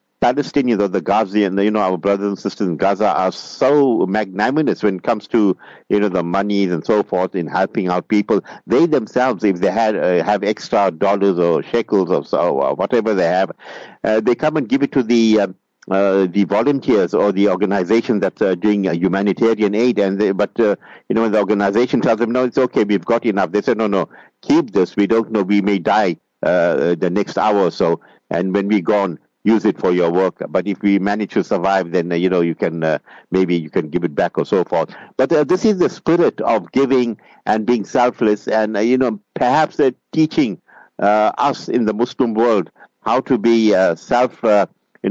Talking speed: 225 wpm